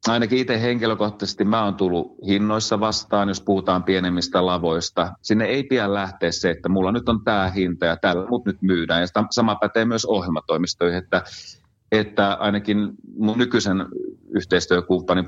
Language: Finnish